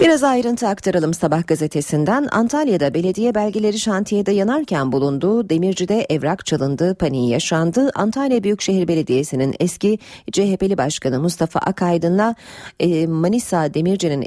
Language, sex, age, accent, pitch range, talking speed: Turkish, female, 40-59, native, 150-205 Hz, 110 wpm